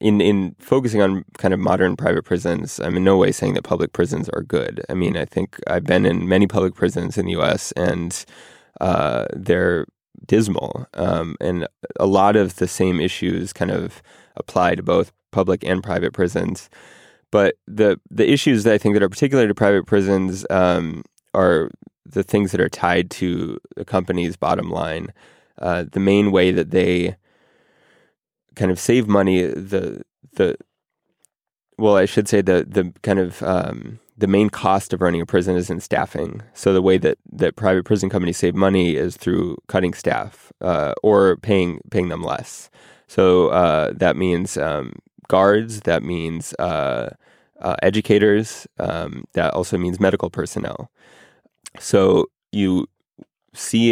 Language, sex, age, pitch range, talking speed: English, male, 20-39, 90-100 Hz, 165 wpm